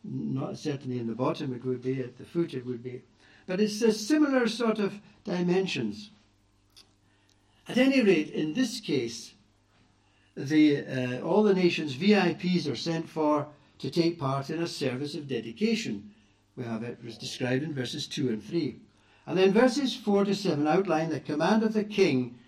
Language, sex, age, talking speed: English, male, 60-79, 175 wpm